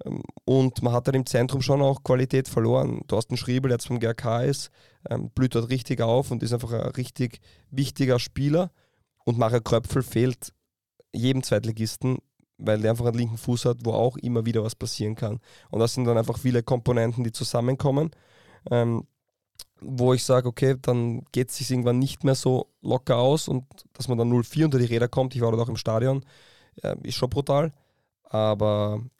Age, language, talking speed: 20-39, German, 190 wpm